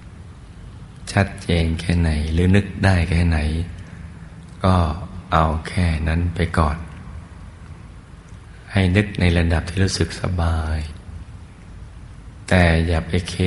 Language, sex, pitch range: Thai, male, 80-90 Hz